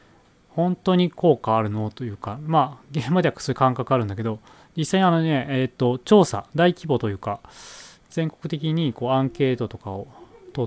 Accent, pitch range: native, 110-150 Hz